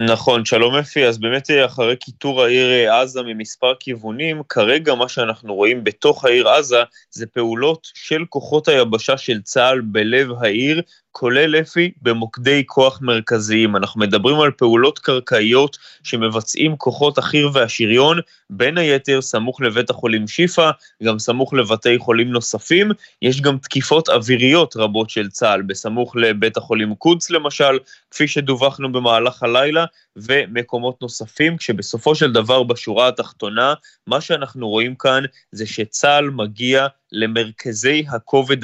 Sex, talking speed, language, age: male, 130 wpm, Hebrew, 20-39